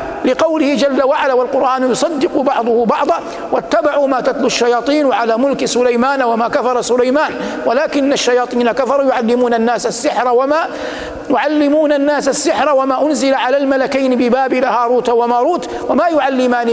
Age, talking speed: 50-69, 130 wpm